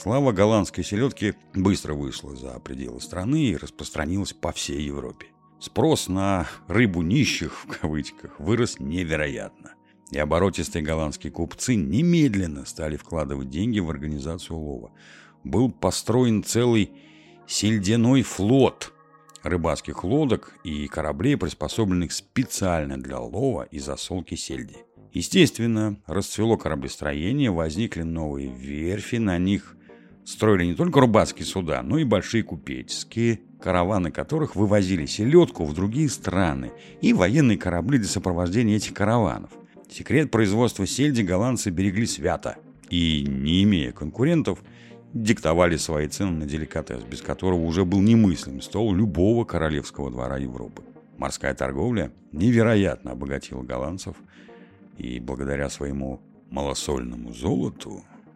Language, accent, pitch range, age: Russian, native, 75-110 Hz, 60-79